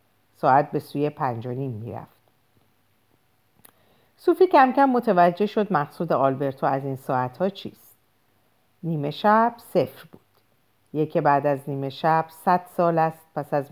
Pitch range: 130-195 Hz